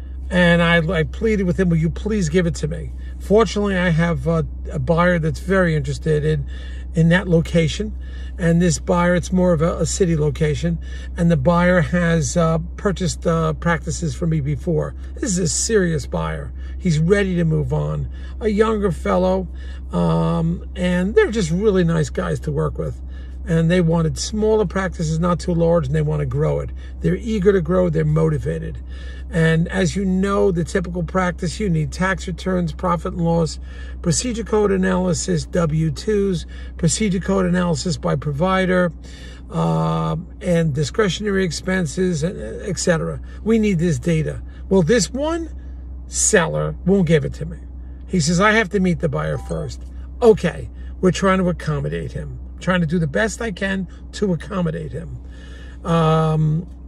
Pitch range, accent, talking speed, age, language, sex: 150-190 Hz, American, 165 wpm, 50-69, English, male